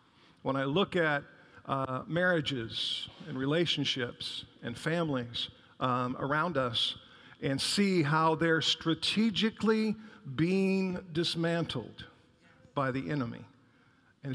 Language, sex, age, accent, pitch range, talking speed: English, male, 50-69, American, 135-175 Hz, 100 wpm